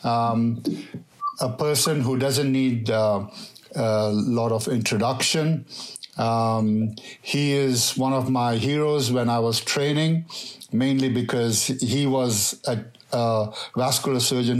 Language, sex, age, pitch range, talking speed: English, male, 60-79, 115-130 Hz, 120 wpm